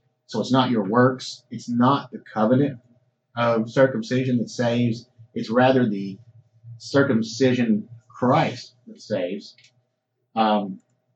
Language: English